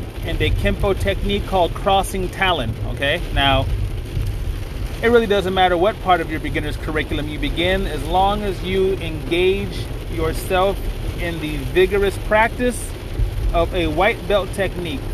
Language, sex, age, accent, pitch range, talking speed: English, male, 30-49, American, 165-210 Hz, 145 wpm